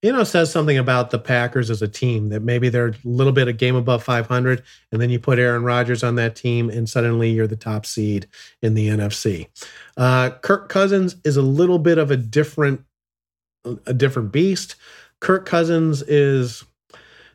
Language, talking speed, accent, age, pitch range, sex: English, 190 wpm, American, 40-59, 120-140 Hz, male